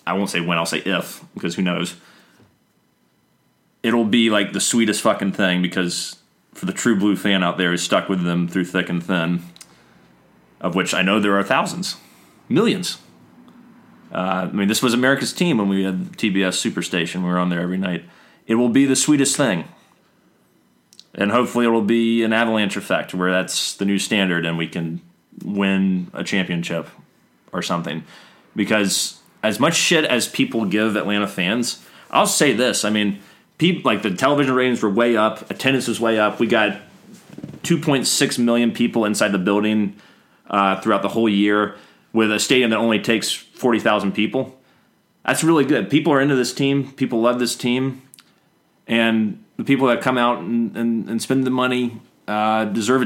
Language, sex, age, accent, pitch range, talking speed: English, male, 30-49, American, 95-125 Hz, 180 wpm